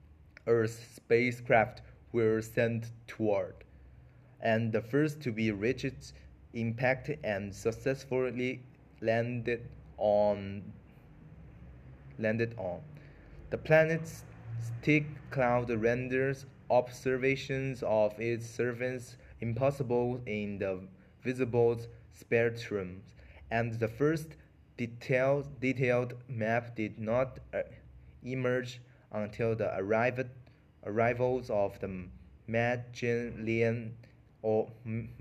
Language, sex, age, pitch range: Chinese, male, 20-39, 100-125 Hz